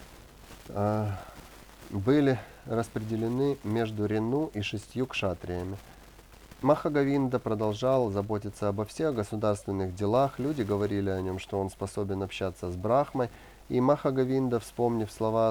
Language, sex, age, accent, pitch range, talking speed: Russian, male, 30-49, native, 100-125 Hz, 110 wpm